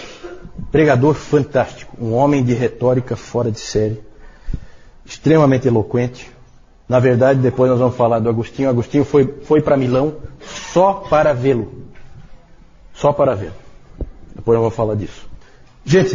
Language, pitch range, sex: Portuguese, 125-160 Hz, male